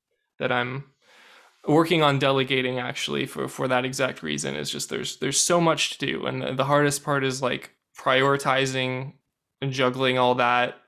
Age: 20-39